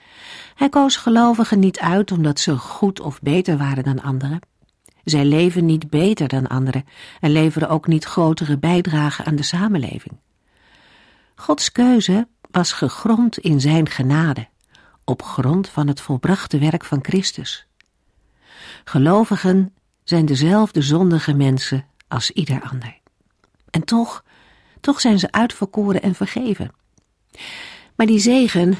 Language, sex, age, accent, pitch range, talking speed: Dutch, female, 50-69, Dutch, 145-200 Hz, 130 wpm